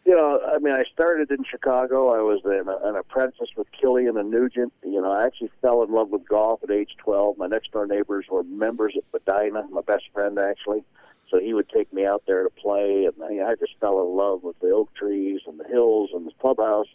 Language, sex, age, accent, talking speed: English, male, 50-69, American, 225 wpm